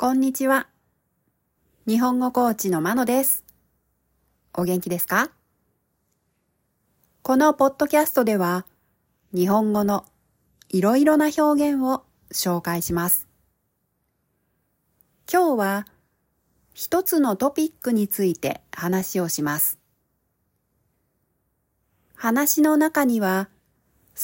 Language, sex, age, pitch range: Japanese, female, 40-59, 175-265 Hz